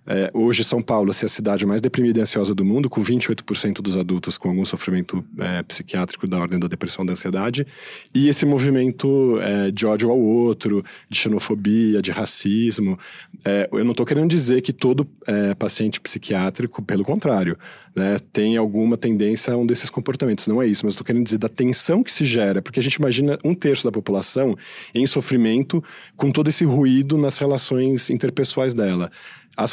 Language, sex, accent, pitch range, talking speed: Portuguese, male, Brazilian, 105-135 Hz, 190 wpm